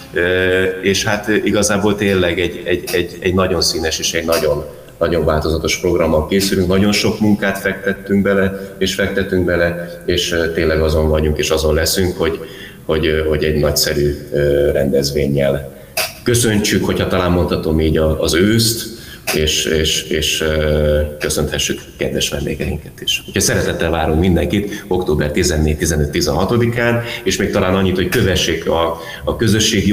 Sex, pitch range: male, 80-95 Hz